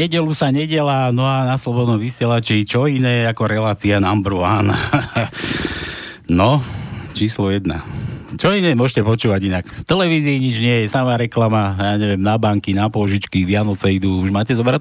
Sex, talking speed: male, 165 wpm